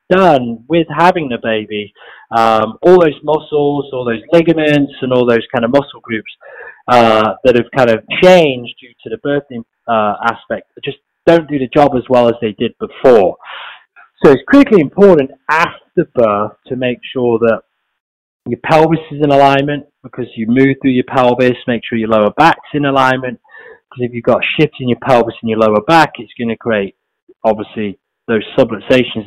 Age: 30-49